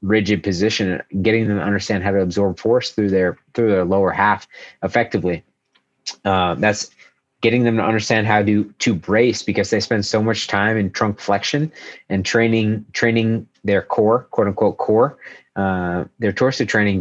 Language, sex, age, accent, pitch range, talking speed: English, male, 30-49, American, 95-110 Hz, 170 wpm